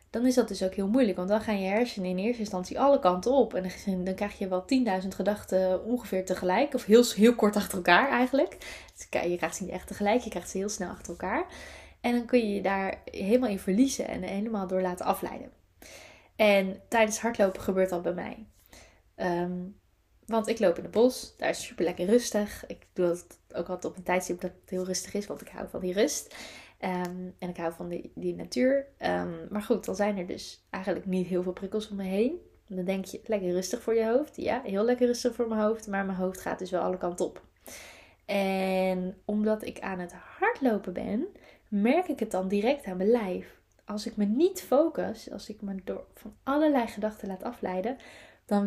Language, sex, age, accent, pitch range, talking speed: Dutch, female, 20-39, Dutch, 185-235 Hz, 220 wpm